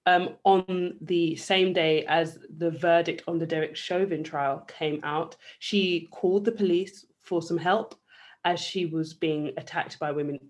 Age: 20-39